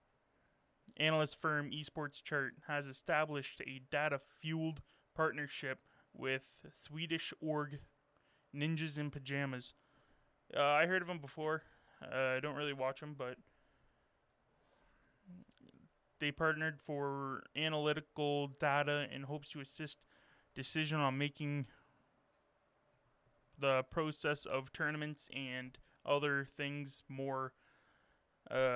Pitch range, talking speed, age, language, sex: 135-150 Hz, 100 wpm, 20-39, English, male